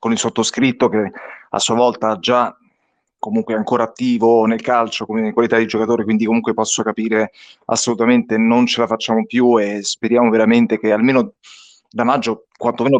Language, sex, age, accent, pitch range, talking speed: Italian, male, 30-49, native, 120-185 Hz, 160 wpm